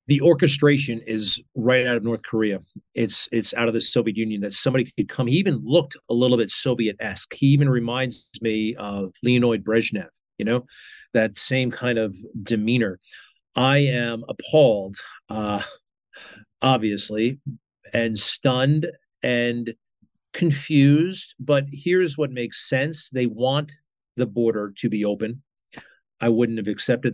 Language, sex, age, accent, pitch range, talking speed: English, male, 40-59, American, 110-135 Hz, 145 wpm